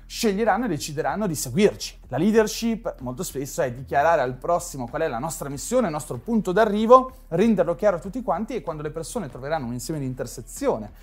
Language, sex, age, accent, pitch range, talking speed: Italian, male, 30-49, native, 145-220 Hz, 195 wpm